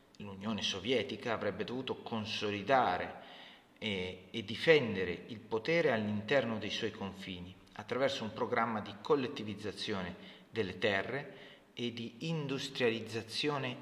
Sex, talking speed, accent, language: male, 105 wpm, native, Italian